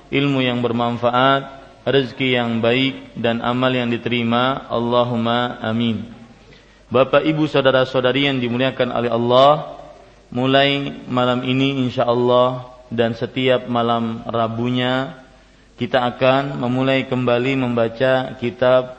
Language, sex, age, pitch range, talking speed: Malay, male, 40-59, 120-135 Hz, 110 wpm